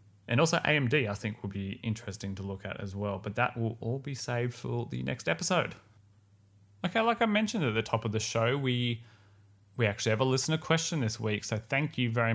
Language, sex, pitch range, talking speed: English, male, 100-120 Hz, 225 wpm